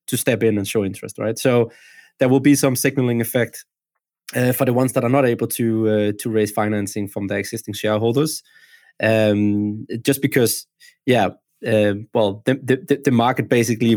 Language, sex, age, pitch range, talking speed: English, male, 20-39, 110-135 Hz, 180 wpm